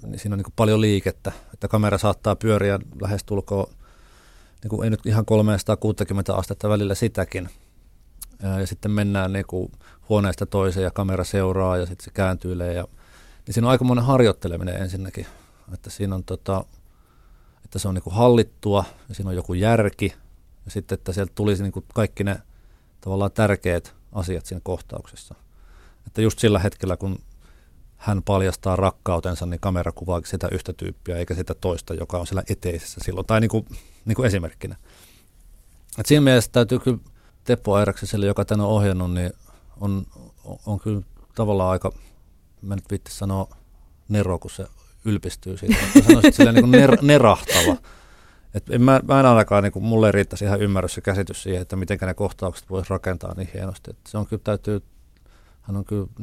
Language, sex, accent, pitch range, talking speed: Finnish, male, native, 90-105 Hz, 160 wpm